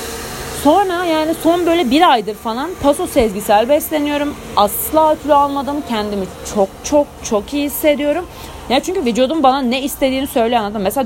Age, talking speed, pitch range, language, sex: 30-49, 155 wpm, 185-275 Hz, Turkish, female